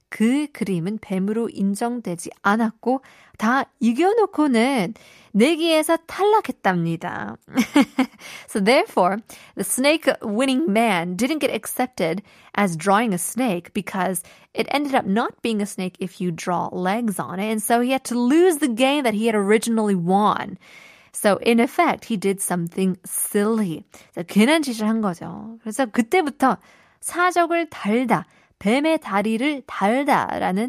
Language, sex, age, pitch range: Korean, female, 20-39, 195-265 Hz